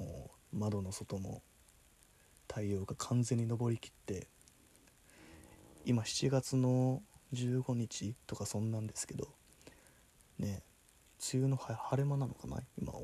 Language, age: Japanese, 20-39